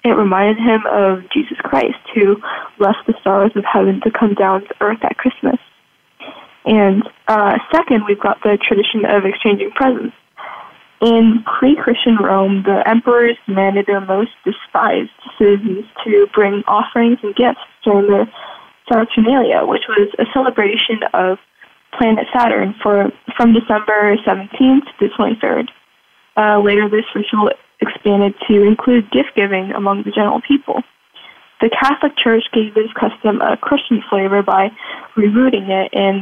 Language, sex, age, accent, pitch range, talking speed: English, female, 20-39, American, 205-255 Hz, 140 wpm